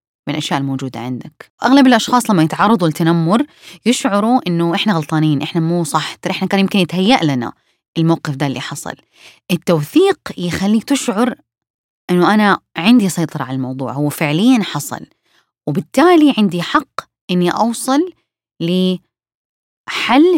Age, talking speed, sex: 20-39, 125 wpm, female